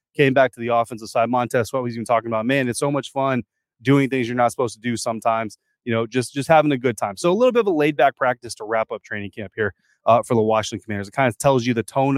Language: English